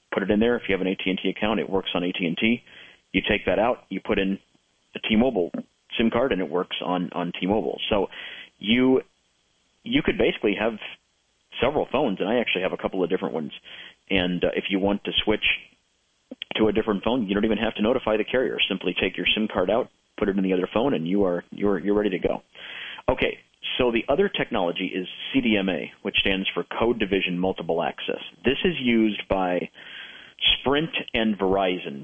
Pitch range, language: 95-110 Hz, English